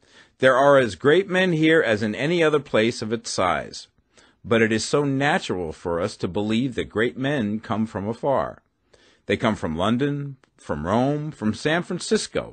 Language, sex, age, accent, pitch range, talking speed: English, male, 50-69, American, 105-150 Hz, 180 wpm